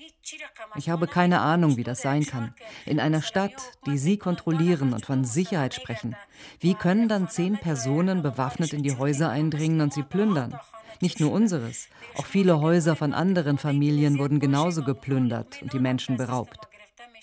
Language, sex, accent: German, female, German